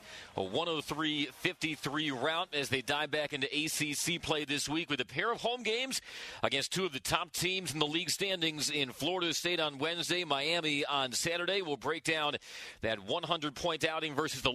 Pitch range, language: 140-170 Hz, English